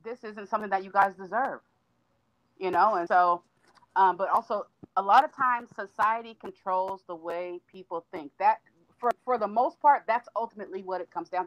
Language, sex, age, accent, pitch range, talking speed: English, female, 40-59, American, 175-220 Hz, 190 wpm